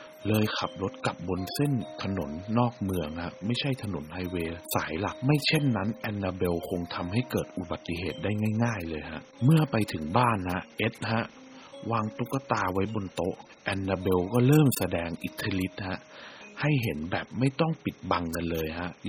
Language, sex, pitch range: Thai, male, 90-125 Hz